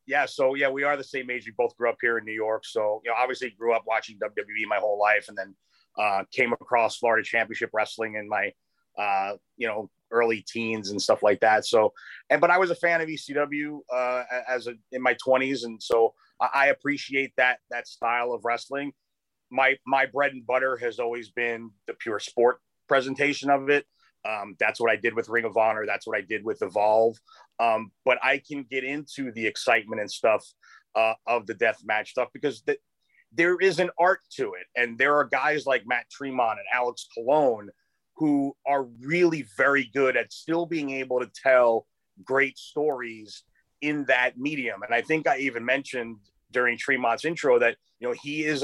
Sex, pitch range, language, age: male, 115-145 Hz, English, 30-49